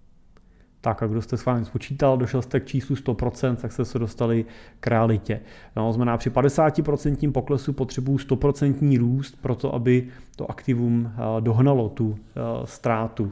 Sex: male